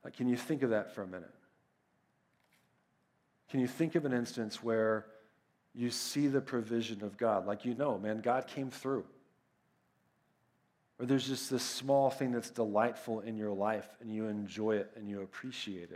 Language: English